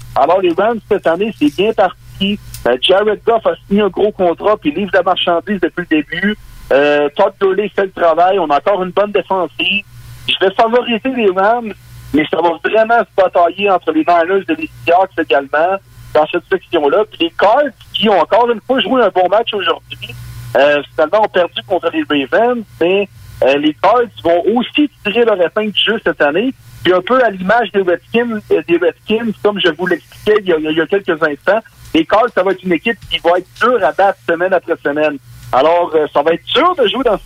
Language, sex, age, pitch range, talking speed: French, male, 60-79, 160-215 Hz, 215 wpm